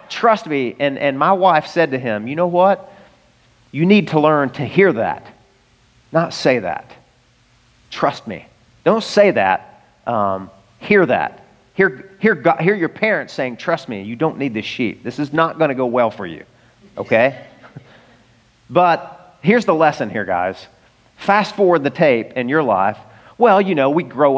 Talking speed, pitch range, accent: 170 wpm, 130-185 Hz, American